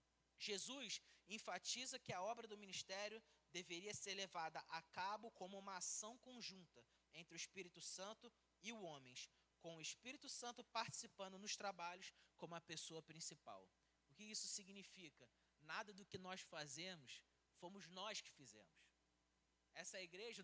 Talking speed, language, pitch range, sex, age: 145 wpm, Portuguese, 175-240 Hz, male, 20-39